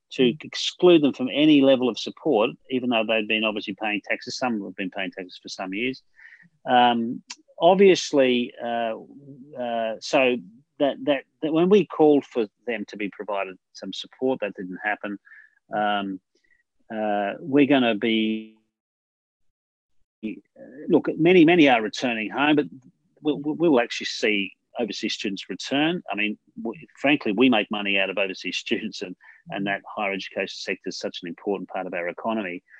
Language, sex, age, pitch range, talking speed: English, male, 40-59, 105-135 Hz, 165 wpm